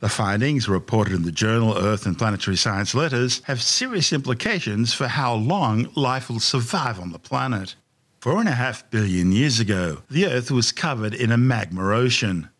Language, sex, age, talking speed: English, male, 50-69, 180 wpm